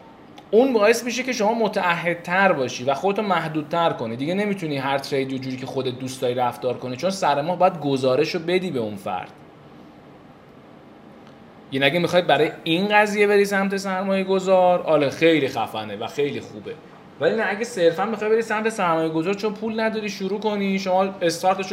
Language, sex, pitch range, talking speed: Persian, male, 145-185 Hz, 170 wpm